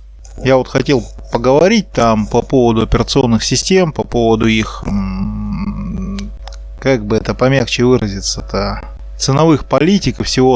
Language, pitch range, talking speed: Russian, 115-150 Hz, 120 wpm